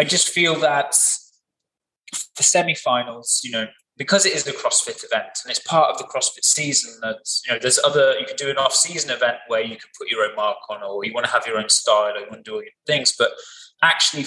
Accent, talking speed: British, 245 wpm